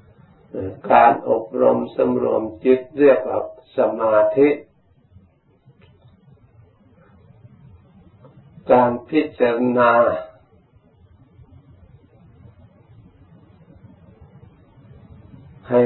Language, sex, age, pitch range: Thai, male, 60-79, 100-135 Hz